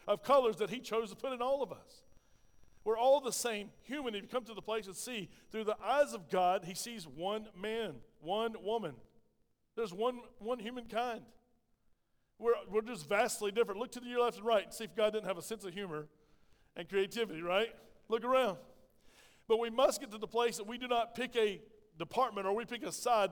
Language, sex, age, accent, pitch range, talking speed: English, male, 40-59, American, 200-235 Hz, 215 wpm